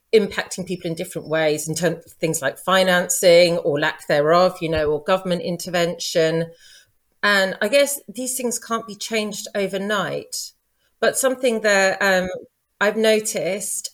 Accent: British